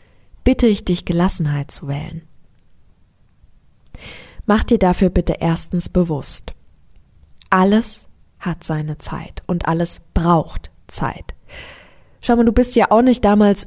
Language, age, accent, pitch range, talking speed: German, 20-39, German, 160-220 Hz, 125 wpm